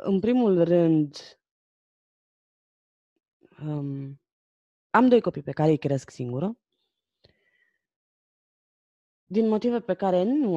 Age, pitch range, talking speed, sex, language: 20-39, 140-190 Hz, 90 wpm, female, Romanian